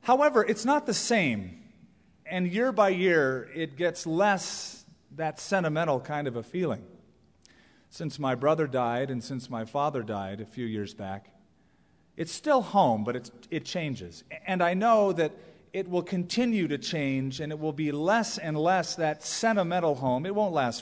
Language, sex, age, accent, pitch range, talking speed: English, male, 40-59, American, 130-185 Hz, 170 wpm